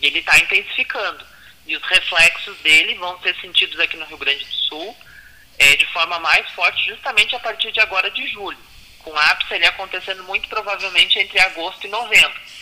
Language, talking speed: Portuguese, 190 wpm